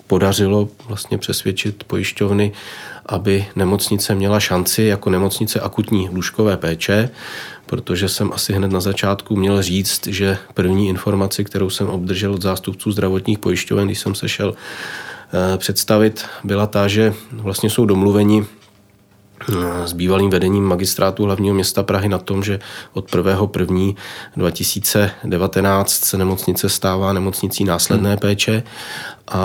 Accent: native